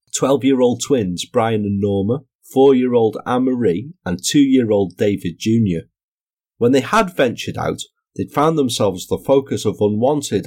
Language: English